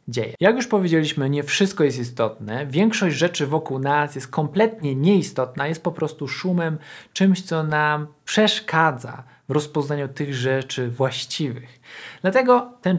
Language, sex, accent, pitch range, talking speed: Polish, male, native, 130-180 Hz, 135 wpm